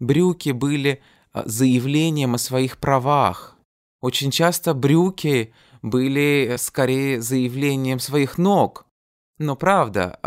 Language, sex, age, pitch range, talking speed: Russian, male, 20-39, 95-130 Hz, 95 wpm